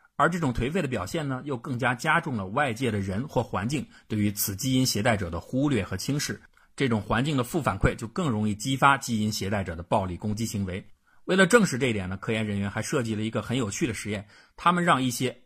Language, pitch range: Chinese, 100-130 Hz